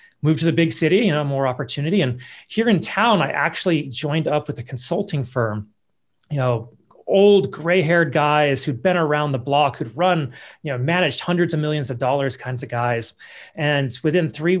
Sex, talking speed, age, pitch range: male, 195 wpm, 30-49, 130-165 Hz